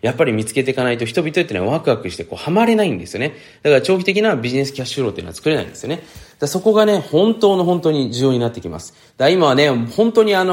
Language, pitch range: Japanese, 110-155 Hz